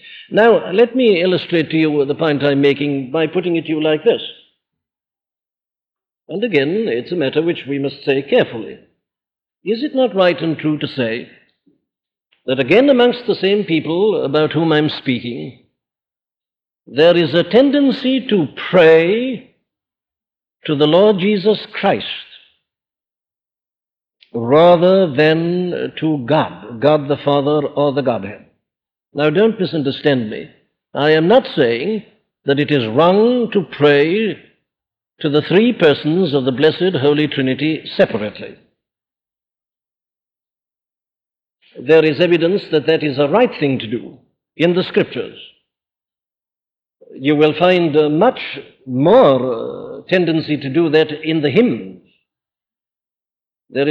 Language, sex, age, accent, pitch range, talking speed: English, male, 60-79, Indian, 145-190 Hz, 130 wpm